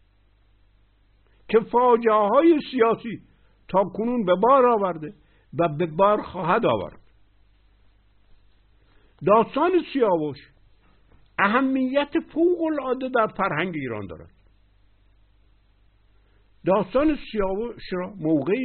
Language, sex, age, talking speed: Persian, male, 60-79, 85 wpm